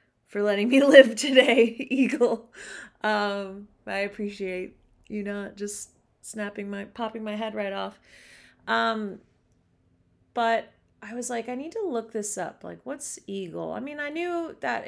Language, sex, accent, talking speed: English, female, American, 155 wpm